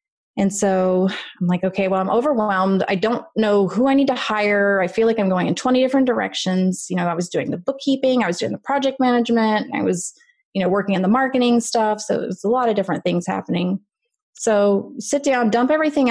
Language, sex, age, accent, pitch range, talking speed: English, female, 30-49, American, 190-240 Hz, 225 wpm